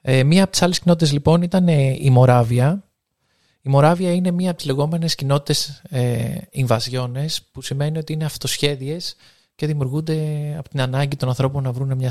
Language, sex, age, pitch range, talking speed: Greek, male, 20-39, 125-150 Hz, 165 wpm